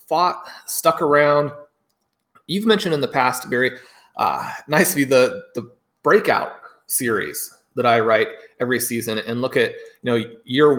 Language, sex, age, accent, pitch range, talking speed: English, male, 30-49, American, 125-160 Hz, 145 wpm